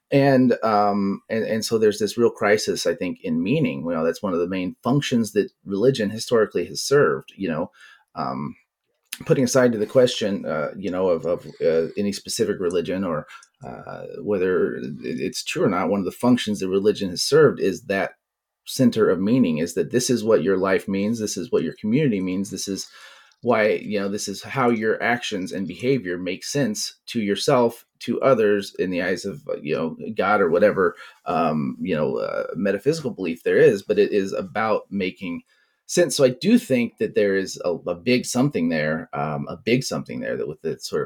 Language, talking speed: English, 205 wpm